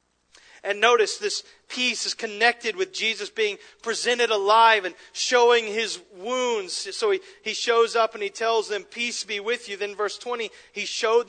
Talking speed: 175 wpm